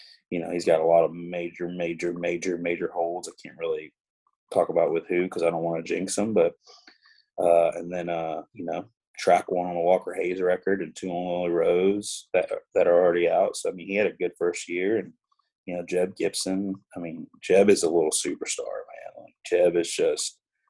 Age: 30-49